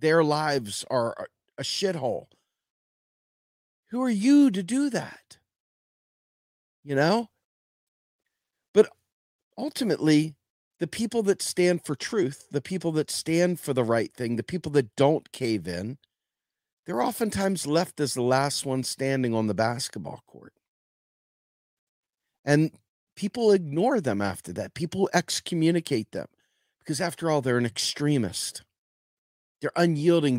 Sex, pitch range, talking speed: male, 125-180 Hz, 125 wpm